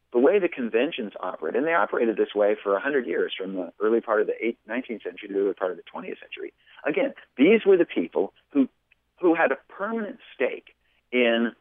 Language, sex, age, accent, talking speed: English, male, 50-69, American, 210 wpm